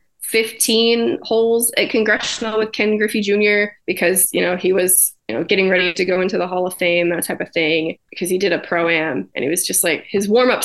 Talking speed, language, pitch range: 225 wpm, English, 180-220 Hz